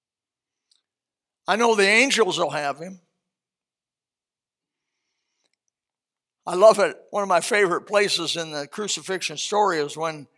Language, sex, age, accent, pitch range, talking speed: English, male, 60-79, American, 165-245 Hz, 120 wpm